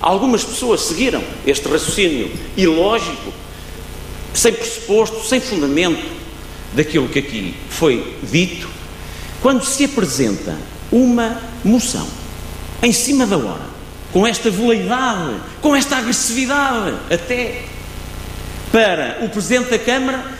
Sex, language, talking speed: male, Portuguese, 105 wpm